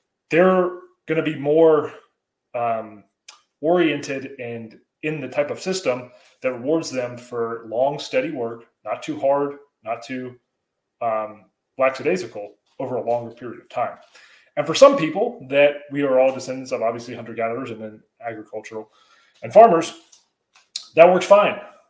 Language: English